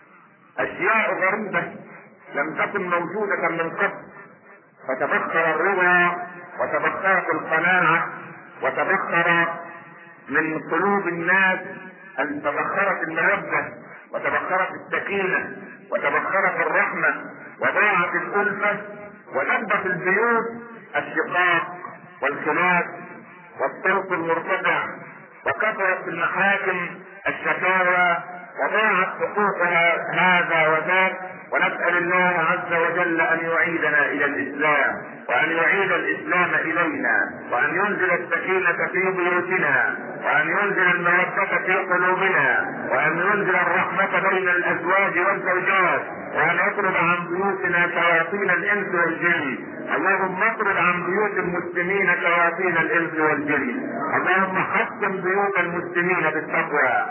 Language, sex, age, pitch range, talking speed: Arabic, male, 50-69, 170-190 Hz, 90 wpm